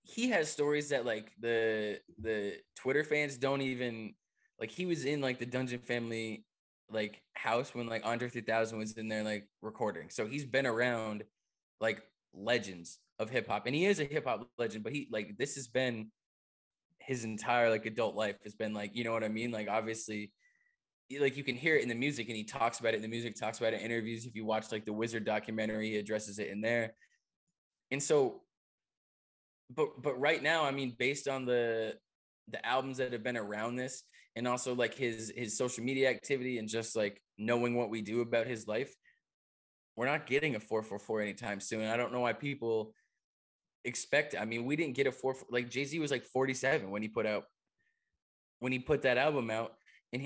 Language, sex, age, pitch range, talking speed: English, male, 20-39, 110-135 Hz, 210 wpm